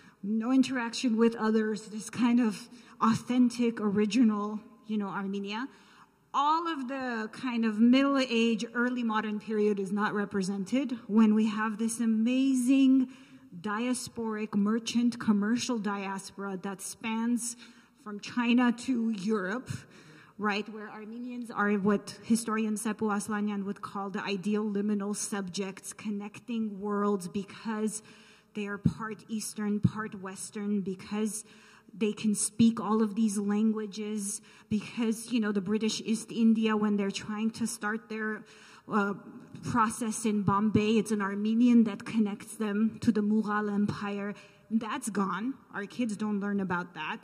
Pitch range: 205-230 Hz